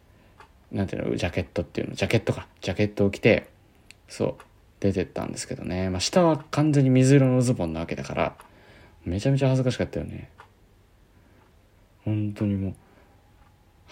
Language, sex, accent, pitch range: Japanese, male, native, 85-115 Hz